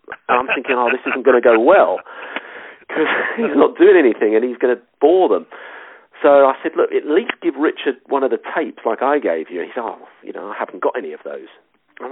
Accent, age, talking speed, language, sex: British, 40-59, 250 wpm, English, male